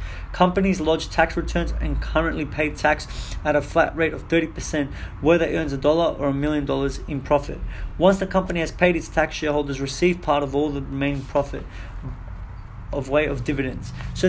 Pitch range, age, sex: 125-165 Hz, 20-39, male